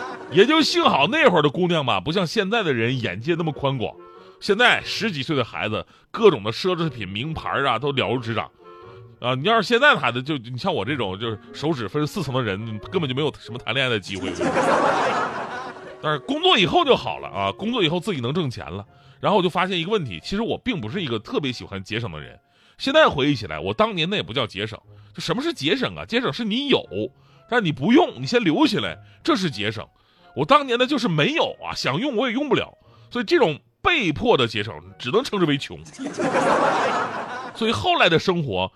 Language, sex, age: Chinese, male, 30-49